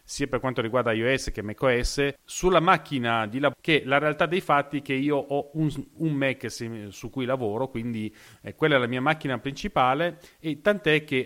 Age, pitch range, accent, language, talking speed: 30-49, 115-155 Hz, native, Italian, 195 wpm